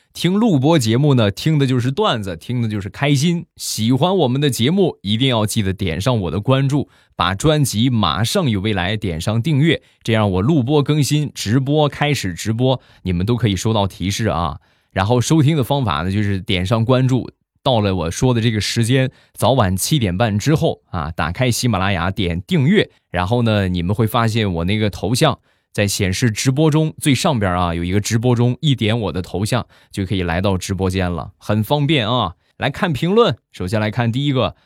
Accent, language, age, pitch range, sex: native, Chinese, 20-39, 100-135 Hz, male